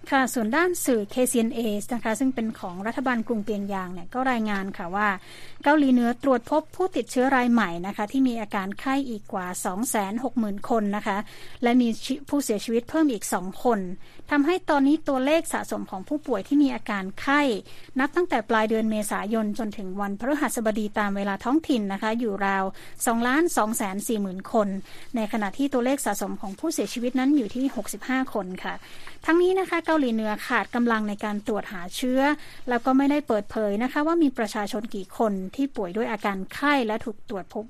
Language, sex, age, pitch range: Thai, female, 20-39, 210-275 Hz